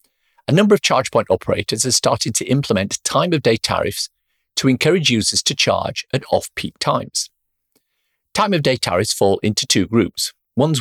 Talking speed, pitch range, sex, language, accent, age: 150 wpm, 100-145 Hz, male, English, British, 50-69